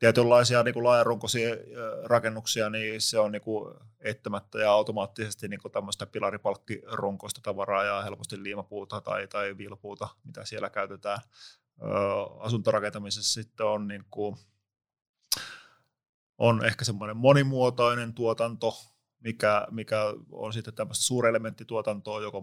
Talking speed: 105 wpm